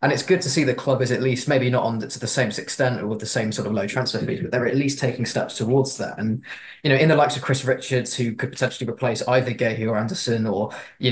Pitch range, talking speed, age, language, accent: 110-130 Hz, 290 wpm, 20-39, English, British